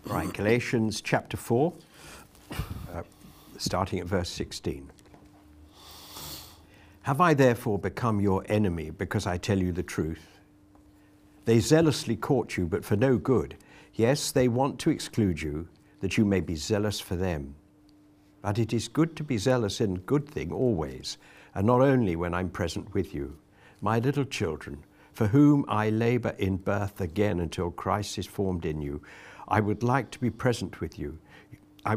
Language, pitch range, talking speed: English, 90-115 Hz, 165 wpm